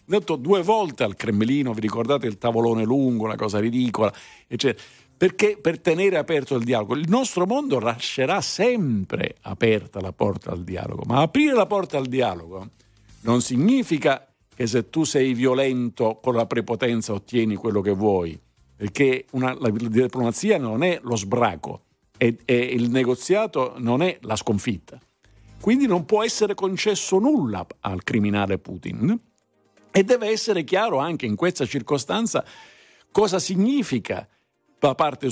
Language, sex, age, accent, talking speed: Italian, male, 50-69, native, 150 wpm